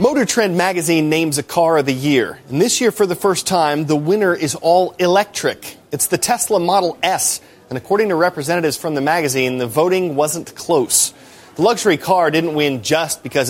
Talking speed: 195 wpm